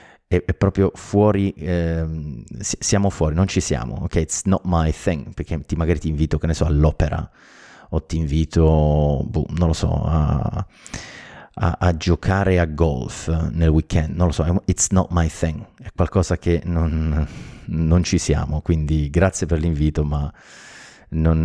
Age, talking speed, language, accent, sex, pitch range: 30-49, 160 wpm, Italian, native, male, 75-90 Hz